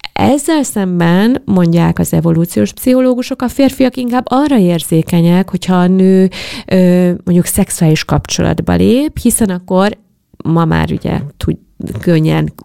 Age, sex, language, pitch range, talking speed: 30-49, female, Hungarian, 145-195 Hz, 120 wpm